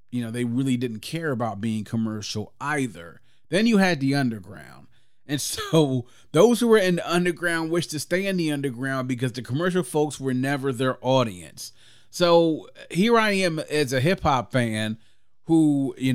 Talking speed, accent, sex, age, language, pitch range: 180 wpm, American, male, 30-49, English, 115-150 Hz